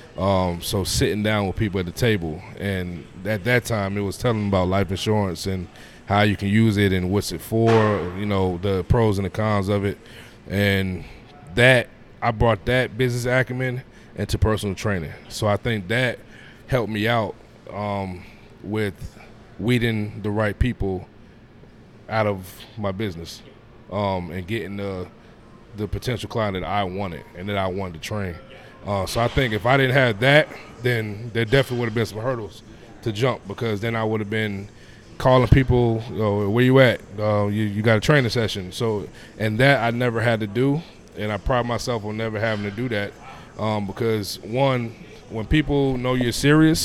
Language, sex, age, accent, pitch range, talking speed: English, male, 20-39, American, 100-120 Hz, 190 wpm